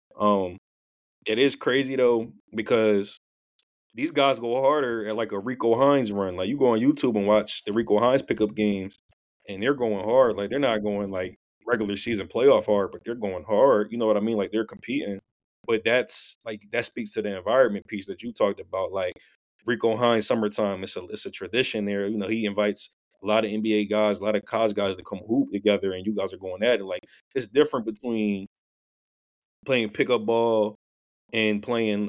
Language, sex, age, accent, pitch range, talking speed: English, male, 20-39, American, 100-115 Hz, 205 wpm